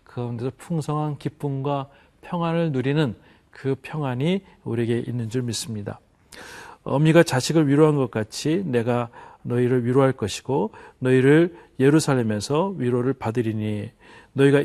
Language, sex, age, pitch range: Korean, male, 40-59, 120-150 Hz